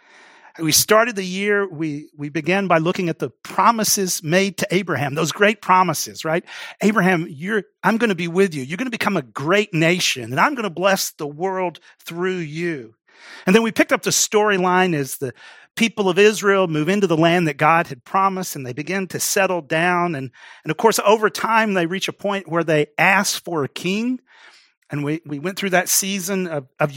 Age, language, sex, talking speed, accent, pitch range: 40-59, English, male, 210 wpm, American, 160-200 Hz